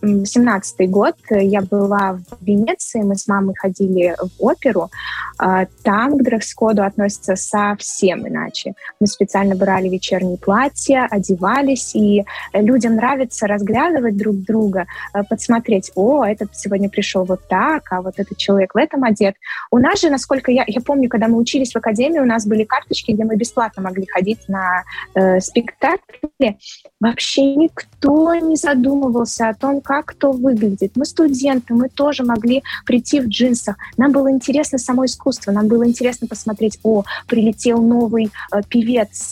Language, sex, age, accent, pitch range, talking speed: Russian, female, 20-39, native, 200-250 Hz, 155 wpm